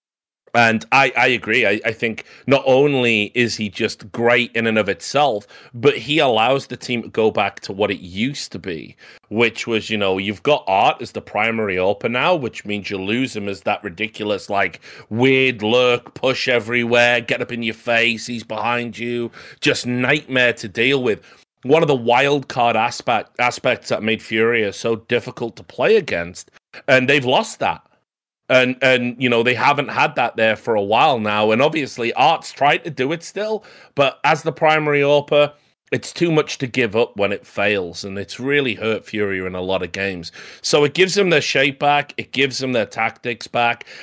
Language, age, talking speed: English, 30-49, 200 wpm